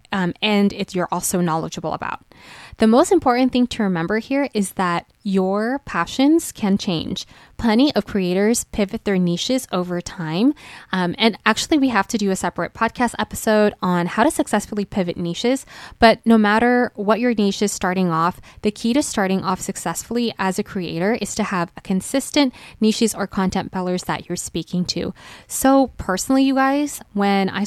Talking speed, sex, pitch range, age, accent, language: 180 wpm, female, 180-230 Hz, 20-39, American, English